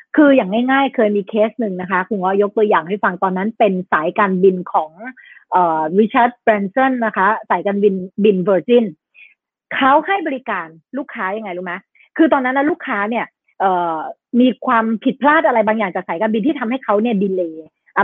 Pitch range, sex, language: 200-280 Hz, female, Thai